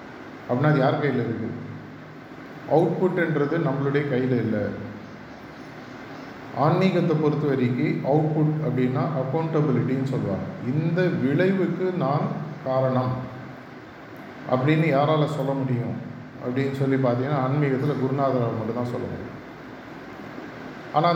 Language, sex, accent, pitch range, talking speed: Tamil, male, native, 125-155 Hz, 95 wpm